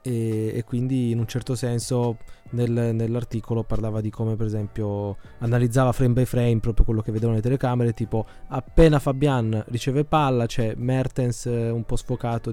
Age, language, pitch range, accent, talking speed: 20-39, Italian, 110-130 Hz, native, 155 wpm